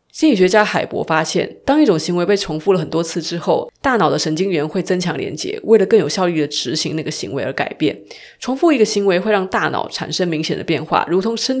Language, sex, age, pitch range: Chinese, female, 20-39, 160-220 Hz